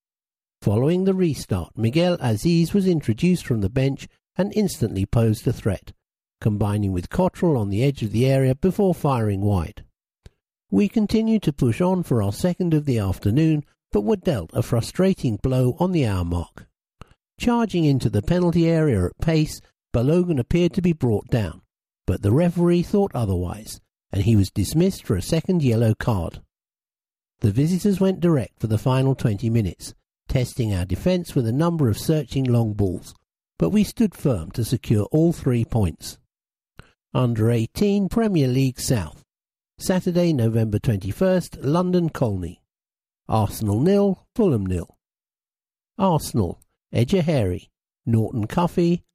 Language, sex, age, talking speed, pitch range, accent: English, male, 50-69, 150 wpm, 110-175 Hz, British